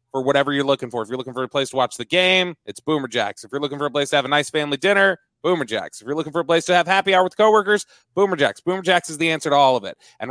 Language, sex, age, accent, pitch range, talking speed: English, male, 30-49, American, 135-175 Hz, 325 wpm